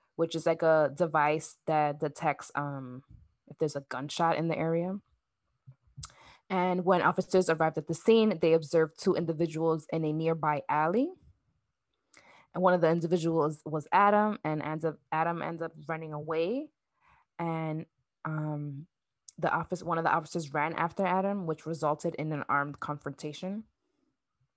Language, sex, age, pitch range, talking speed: English, female, 20-39, 150-170 Hz, 150 wpm